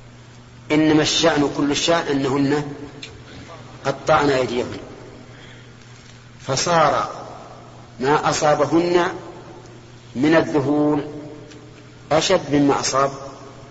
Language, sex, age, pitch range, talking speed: Arabic, male, 40-59, 125-150 Hz, 65 wpm